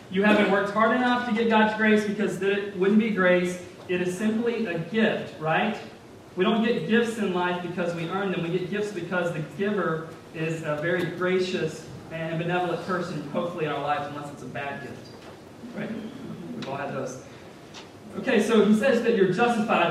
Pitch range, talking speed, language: 175-220 Hz, 195 wpm, English